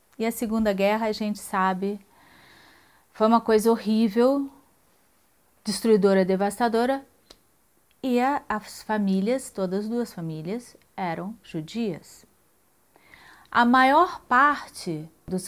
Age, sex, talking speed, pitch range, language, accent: 30-49, female, 100 wpm, 200-250 Hz, Portuguese, Brazilian